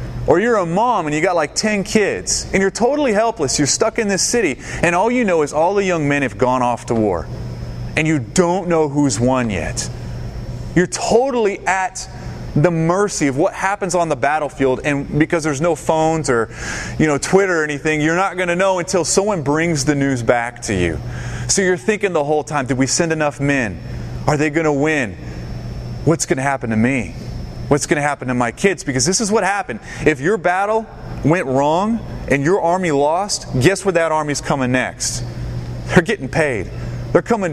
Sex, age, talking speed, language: male, 30-49, 200 wpm, English